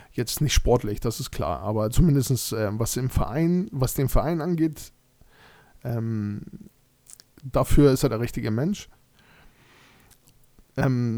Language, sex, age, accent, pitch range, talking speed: German, male, 20-39, German, 120-140 Hz, 125 wpm